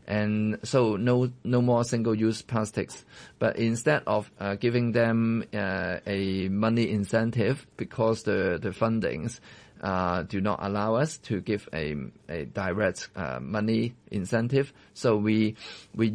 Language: English